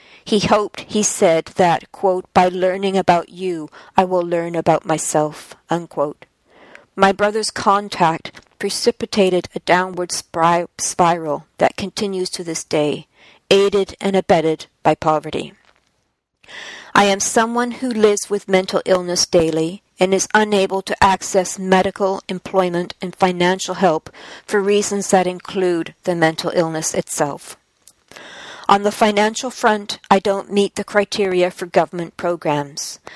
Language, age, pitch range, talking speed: English, 50-69, 175-205 Hz, 130 wpm